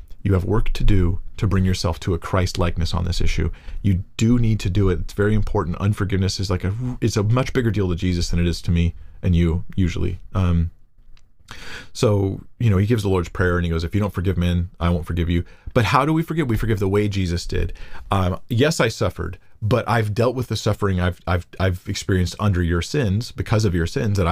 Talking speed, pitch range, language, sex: 240 wpm, 90-110 Hz, English, male